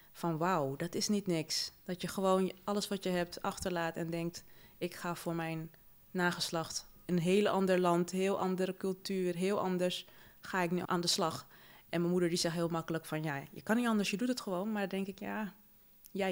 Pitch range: 175-210 Hz